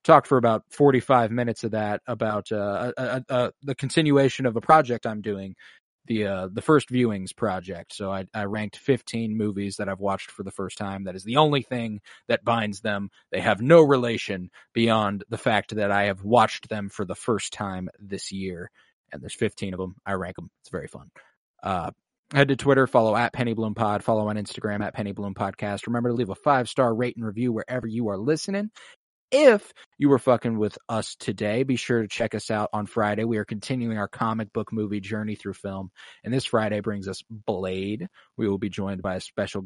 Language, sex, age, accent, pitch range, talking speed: English, male, 20-39, American, 100-120 Hz, 210 wpm